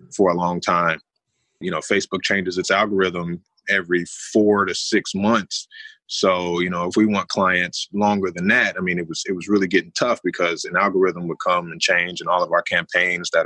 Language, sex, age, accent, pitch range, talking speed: English, male, 20-39, American, 90-120 Hz, 210 wpm